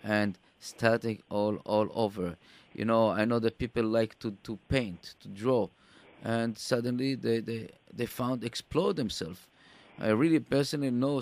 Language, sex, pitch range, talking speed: English, male, 110-130 Hz, 155 wpm